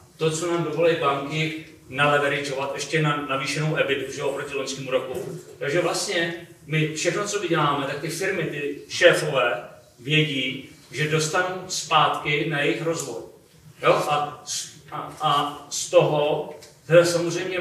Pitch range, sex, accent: 145-175 Hz, male, native